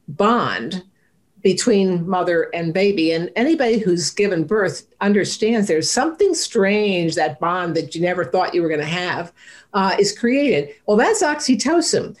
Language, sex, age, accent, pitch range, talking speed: English, female, 50-69, American, 175-225 Hz, 150 wpm